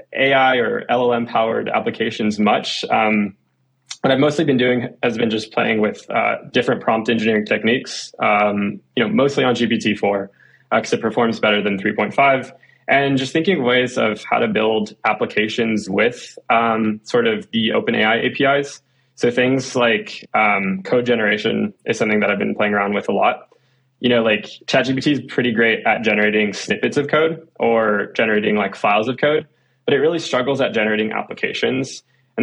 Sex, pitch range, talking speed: male, 110-135 Hz, 180 wpm